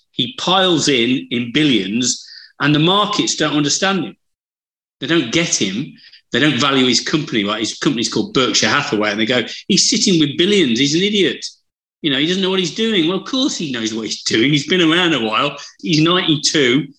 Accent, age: British, 40-59